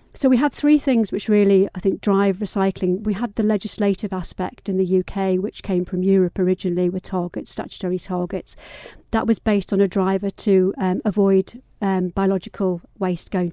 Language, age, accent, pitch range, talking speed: English, 50-69, British, 190-215 Hz, 180 wpm